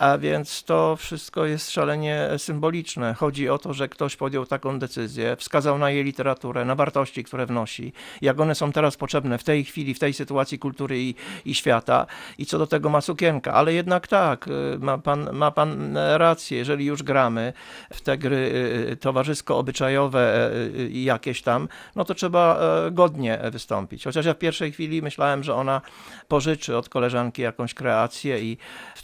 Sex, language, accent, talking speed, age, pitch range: male, Polish, native, 165 wpm, 50-69, 125-150 Hz